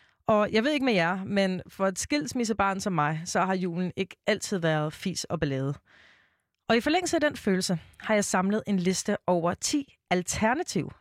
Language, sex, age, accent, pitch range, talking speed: Danish, female, 30-49, native, 170-225 Hz, 190 wpm